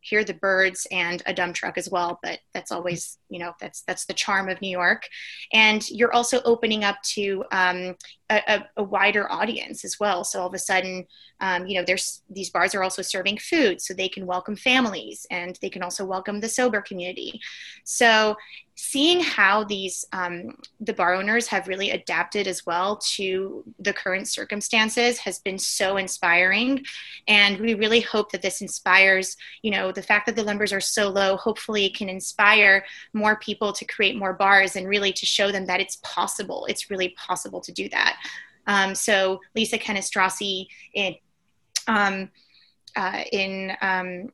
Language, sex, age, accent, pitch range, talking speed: English, female, 20-39, American, 185-210 Hz, 180 wpm